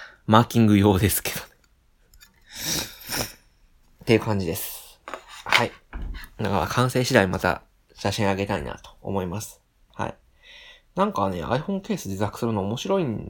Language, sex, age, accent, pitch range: Japanese, male, 20-39, native, 95-115 Hz